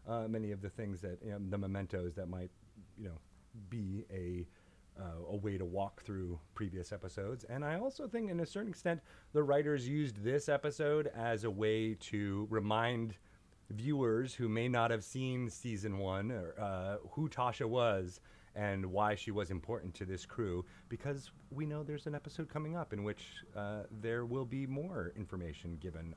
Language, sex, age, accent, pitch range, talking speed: English, male, 30-49, American, 90-120 Hz, 185 wpm